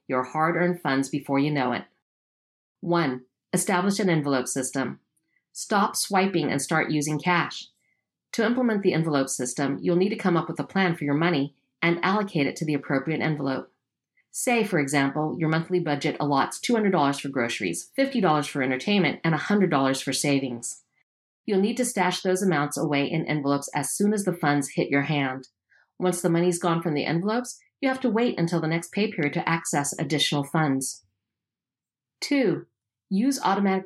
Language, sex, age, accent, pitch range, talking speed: English, female, 40-59, American, 145-195 Hz, 175 wpm